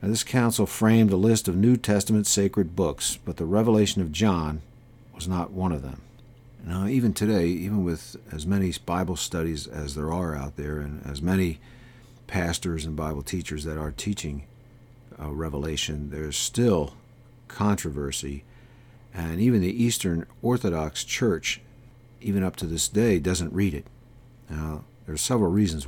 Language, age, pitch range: English, 50-69, 85-120 Hz